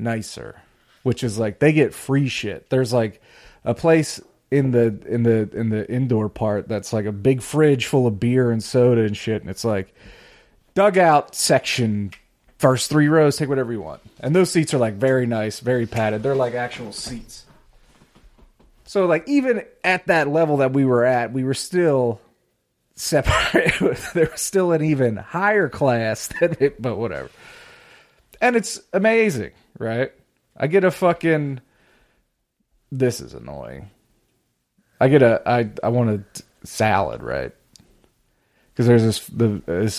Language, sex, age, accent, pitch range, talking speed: English, male, 30-49, American, 105-140 Hz, 160 wpm